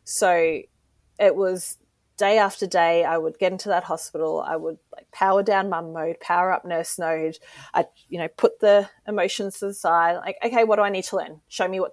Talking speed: 210 wpm